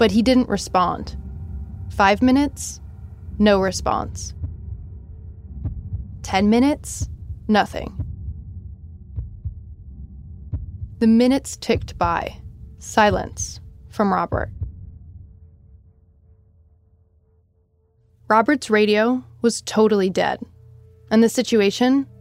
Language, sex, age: English, female, 20-39